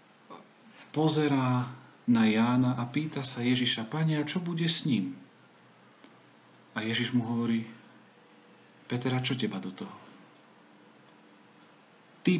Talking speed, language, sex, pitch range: 100 wpm, Slovak, male, 110-135 Hz